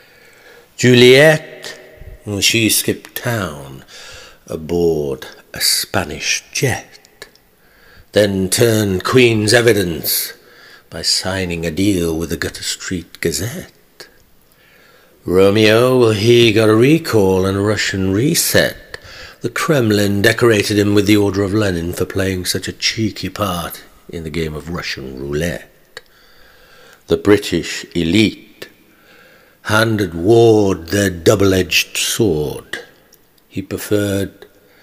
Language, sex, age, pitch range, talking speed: English, male, 60-79, 85-110 Hz, 110 wpm